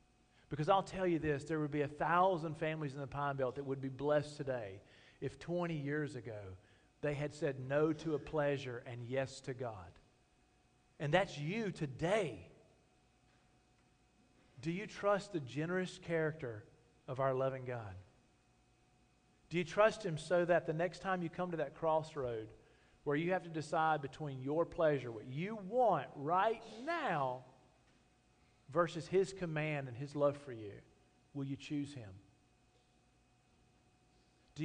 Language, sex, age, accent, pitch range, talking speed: English, male, 40-59, American, 125-165 Hz, 155 wpm